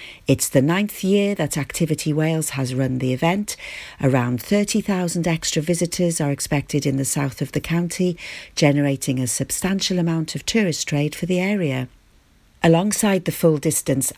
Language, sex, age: English, female, 50-69